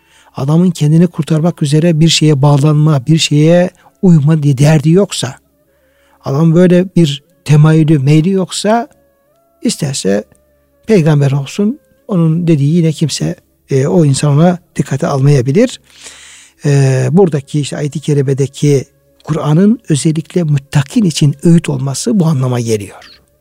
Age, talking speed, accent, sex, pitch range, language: 60-79, 115 wpm, native, male, 140-170 Hz, Turkish